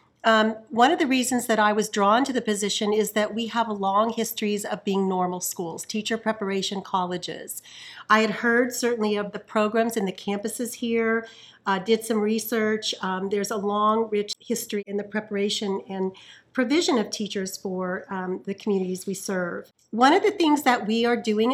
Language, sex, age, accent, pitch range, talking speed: English, female, 40-59, American, 200-230 Hz, 185 wpm